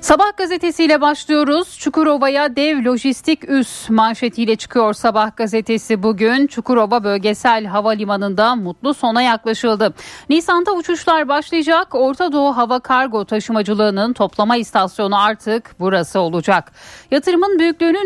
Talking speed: 110 wpm